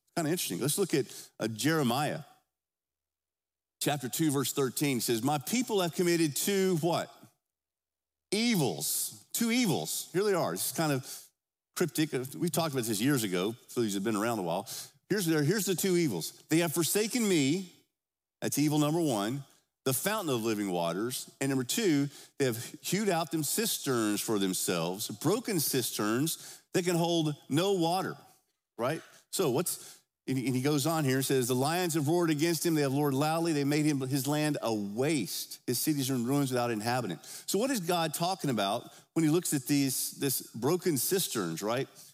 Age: 50-69